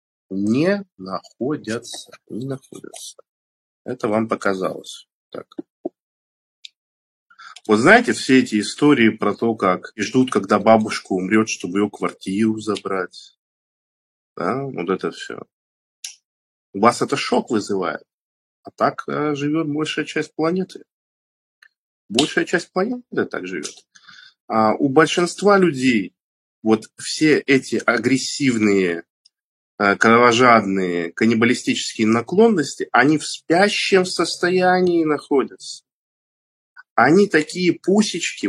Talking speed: 100 wpm